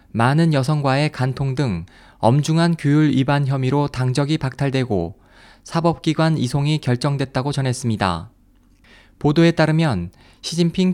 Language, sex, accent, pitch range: Korean, male, native, 130-160 Hz